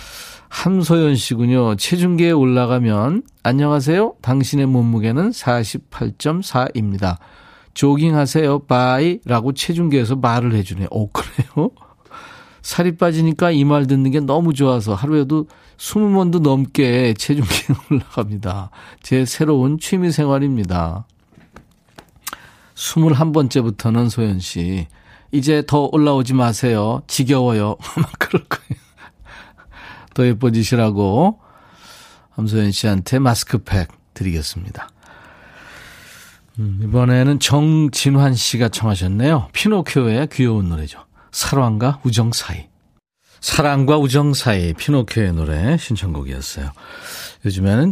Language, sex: Korean, male